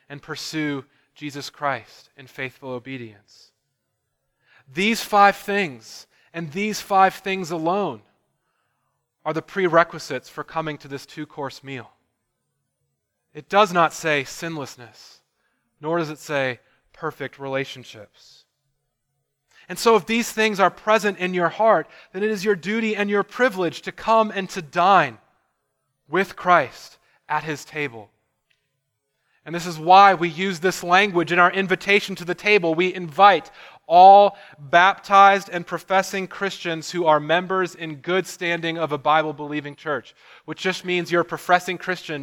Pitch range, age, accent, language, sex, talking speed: 140-190 Hz, 30-49, American, English, male, 145 wpm